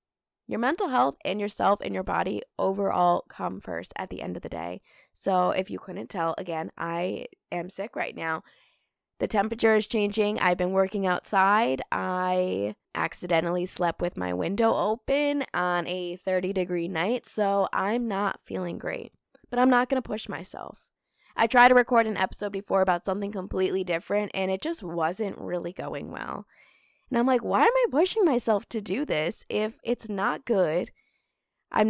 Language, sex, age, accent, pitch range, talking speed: English, female, 20-39, American, 180-230 Hz, 175 wpm